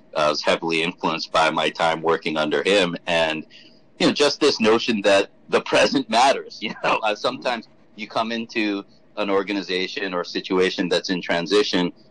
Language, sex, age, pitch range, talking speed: English, male, 40-59, 85-115 Hz, 170 wpm